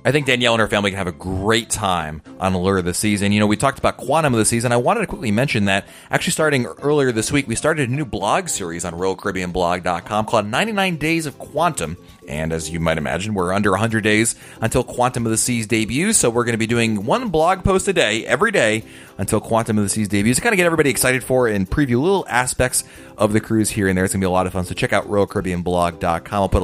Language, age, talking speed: English, 30-49, 260 wpm